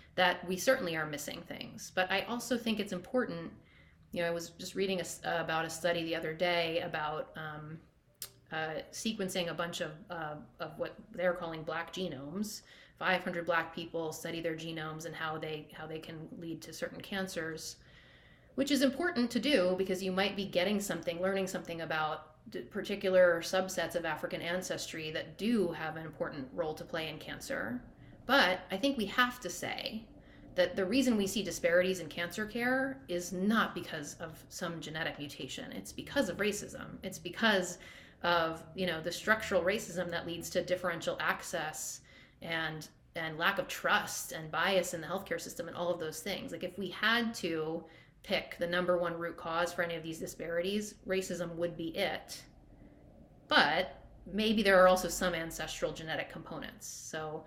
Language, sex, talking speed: English, female, 180 wpm